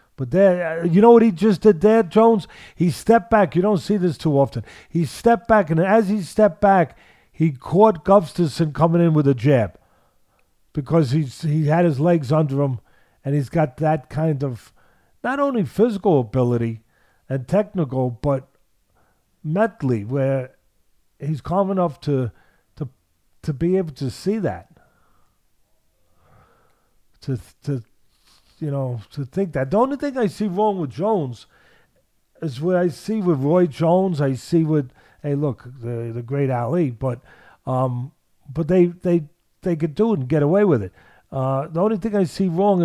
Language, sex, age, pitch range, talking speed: English, male, 50-69, 135-185 Hz, 170 wpm